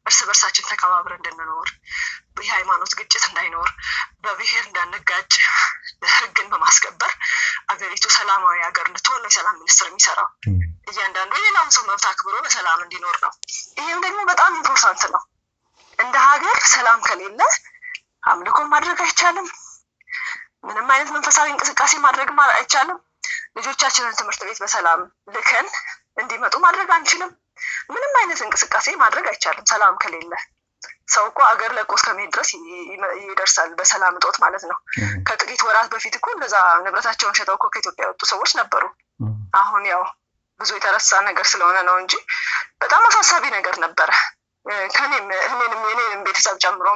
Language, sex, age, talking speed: Amharic, female, 20-39, 125 wpm